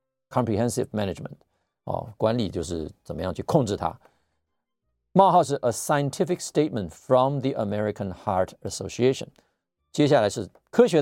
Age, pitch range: 50-69, 95-130 Hz